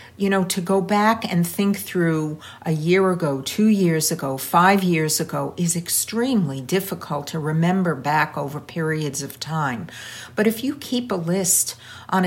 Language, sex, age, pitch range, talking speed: English, female, 60-79, 155-205 Hz, 165 wpm